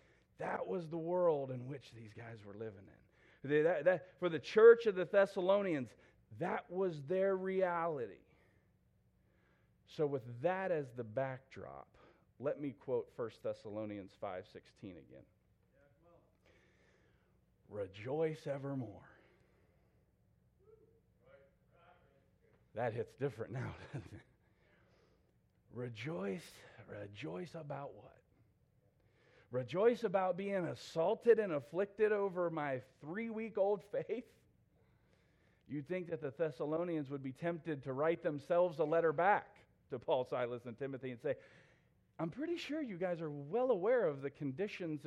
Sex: male